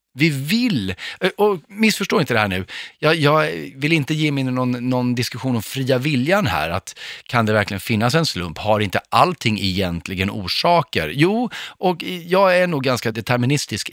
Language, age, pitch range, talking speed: Swedish, 30-49, 100-145 Hz, 170 wpm